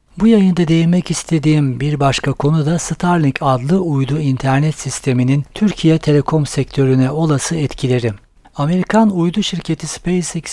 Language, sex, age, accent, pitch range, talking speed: Turkish, male, 60-79, native, 135-160 Hz, 125 wpm